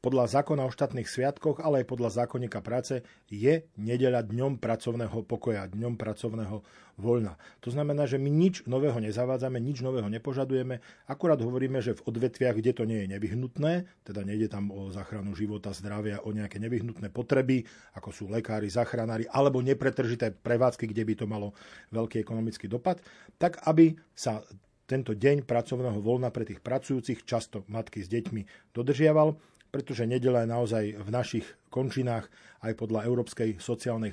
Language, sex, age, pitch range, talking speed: Slovak, male, 40-59, 110-130 Hz, 155 wpm